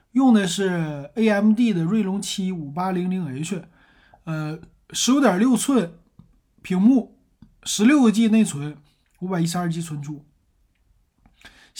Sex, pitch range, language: male, 165-215 Hz, Chinese